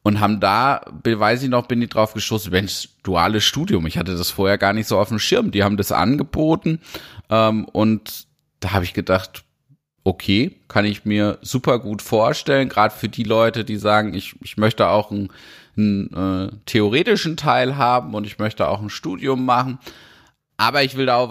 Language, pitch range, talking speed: German, 105-130 Hz, 190 wpm